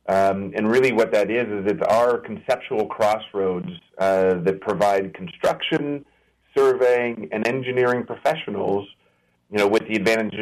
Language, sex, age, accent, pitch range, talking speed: English, male, 40-59, American, 95-115 Hz, 140 wpm